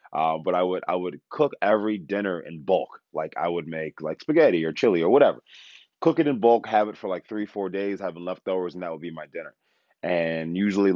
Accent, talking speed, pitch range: American, 230 wpm, 80-95 Hz